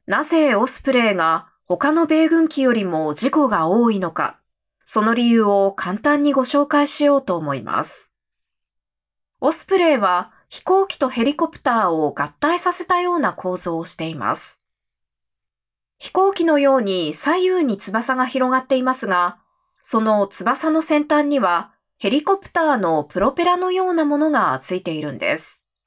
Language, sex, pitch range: Japanese, female, 185-300 Hz